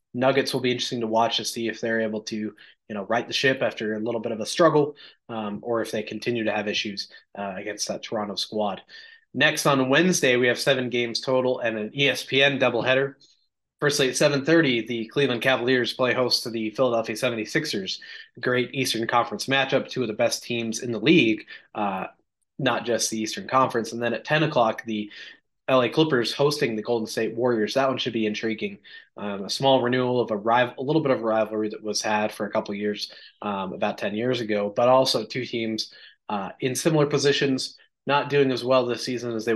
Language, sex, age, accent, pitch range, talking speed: English, male, 20-39, American, 110-130 Hz, 210 wpm